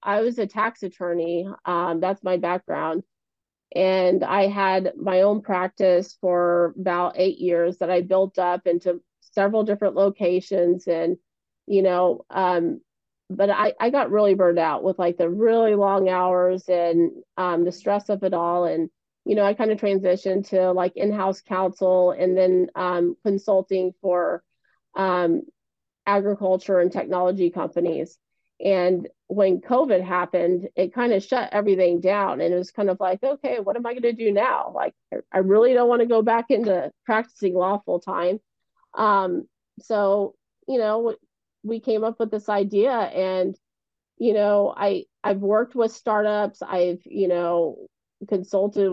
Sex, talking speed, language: female, 160 wpm, English